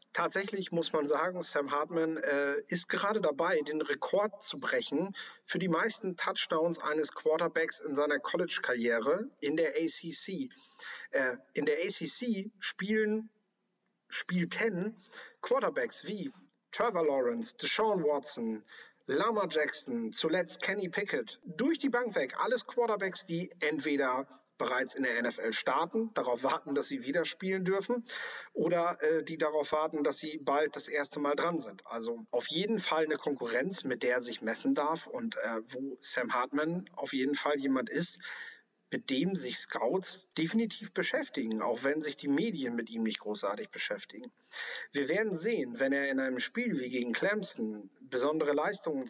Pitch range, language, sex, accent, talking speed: 140-205 Hz, German, male, German, 155 wpm